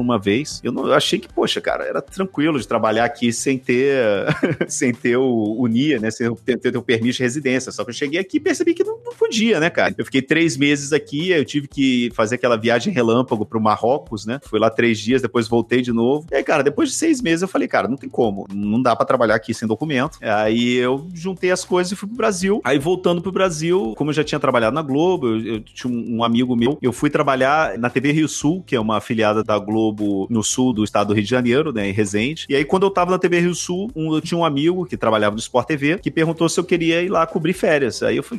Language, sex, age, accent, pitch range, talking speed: Portuguese, male, 30-49, Brazilian, 115-165 Hz, 260 wpm